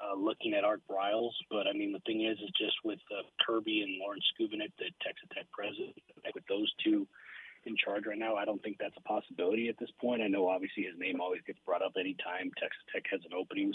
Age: 30-49